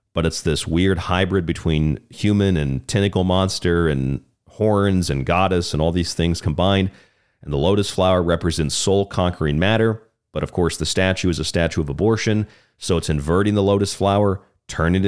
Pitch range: 85-110 Hz